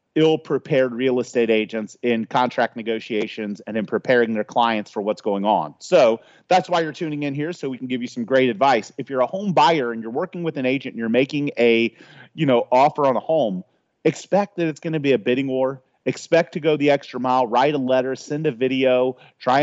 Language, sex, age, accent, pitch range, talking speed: English, male, 30-49, American, 125-155 Hz, 225 wpm